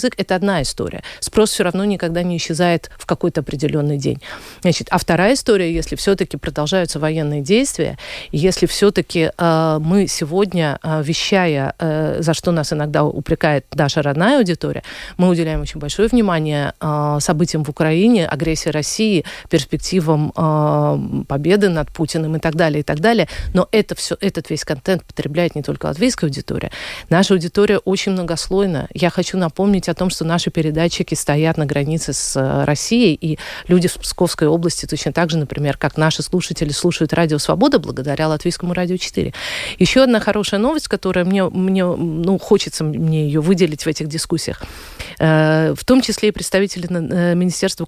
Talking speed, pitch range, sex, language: 165 wpm, 155-190 Hz, female, Russian